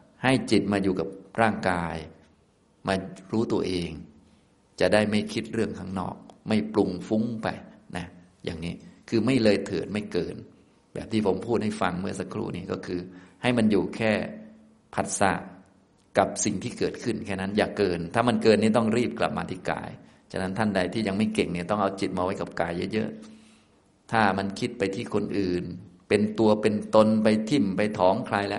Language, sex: Thai, male